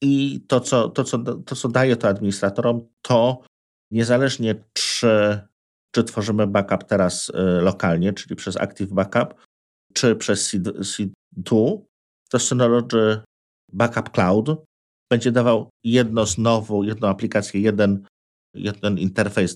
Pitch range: 95-120 Hz